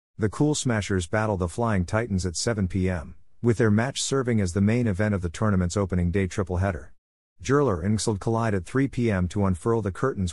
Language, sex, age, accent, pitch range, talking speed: English, male, 50-69, American, 90-115 Hz, 205 wpm